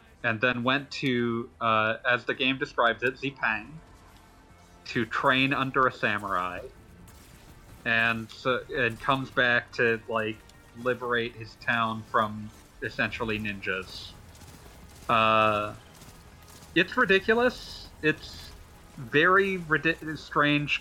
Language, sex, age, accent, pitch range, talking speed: English, male, 40-59, American, 105-140 Hz, 105 wpm